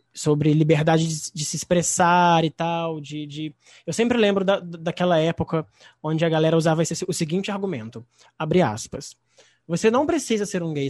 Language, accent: Portuguese, Brazilian